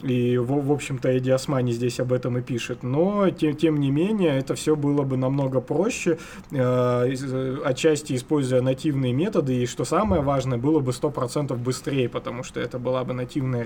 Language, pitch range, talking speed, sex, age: Russian, 130-160 Hz, 165 wpm, male, 20-39